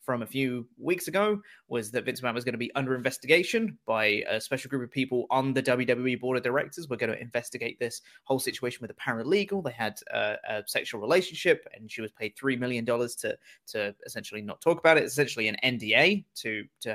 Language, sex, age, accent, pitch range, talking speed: English, male, 20-39, British, 115-150 Hz, 215 wpm